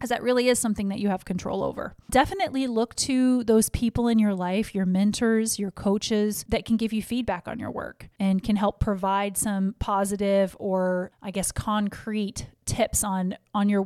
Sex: female